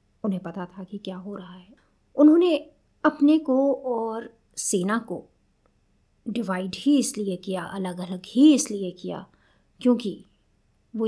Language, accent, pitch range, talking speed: Hindi, native, 185-245 Hz, 135 wpm